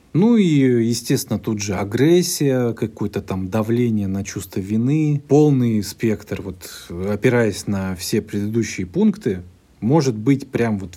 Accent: native